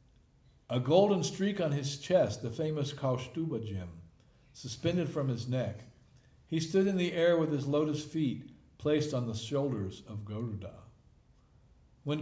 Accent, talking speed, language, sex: American, 145 wpm, English, male